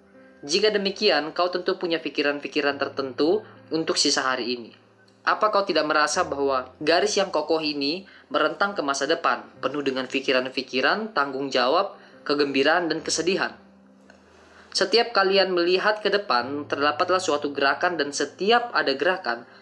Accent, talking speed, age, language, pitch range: native, 135 wpm, 20-39, Indonesian, 135-180 Hz